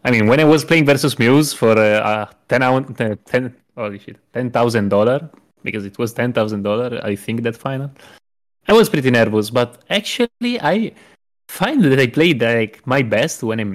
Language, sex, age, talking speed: English, male, 20-39, 155 wpm